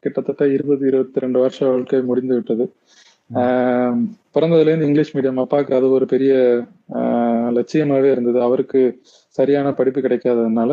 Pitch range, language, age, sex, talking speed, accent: 125-145 Hz, Tamil, 20-39, male, 115 wpm, native